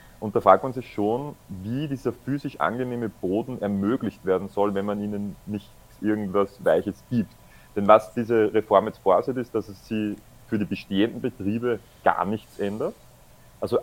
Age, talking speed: 30-49, 170 wpm